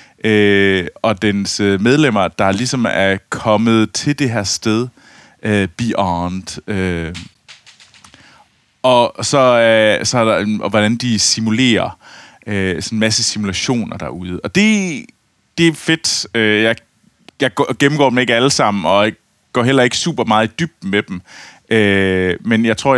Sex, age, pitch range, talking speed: male, 30-49, 100-120 Hz, 155 wpm